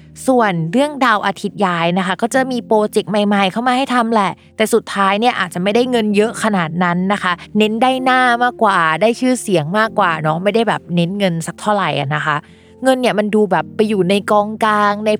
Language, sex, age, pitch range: Thai, female, 20-39, 175-220 Hz